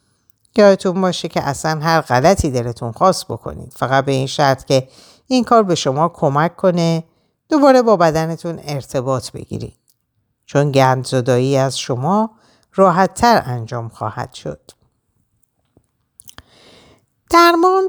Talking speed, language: 115 wpm, Persian